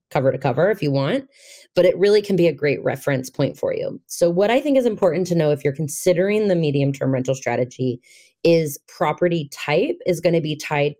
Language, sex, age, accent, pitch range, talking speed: English, female, 20-39, American, 145-180 Hz, 220 wpm